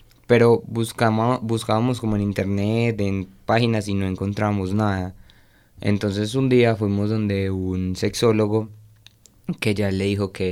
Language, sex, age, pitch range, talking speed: Spanish, male, 20-39, 95-110 Hz, 135 wpm